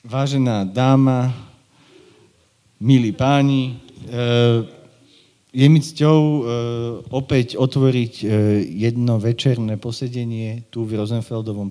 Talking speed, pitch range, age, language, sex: 75 wpm, 105-130 Hz, 40-59, Slovak, male